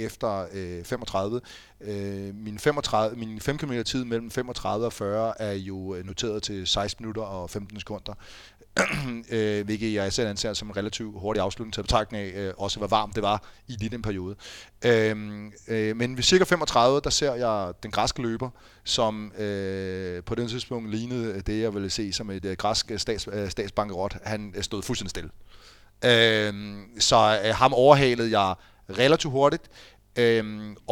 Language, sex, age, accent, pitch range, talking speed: Danish, male, 30-49, native, 100-120 Hz, 150 wpm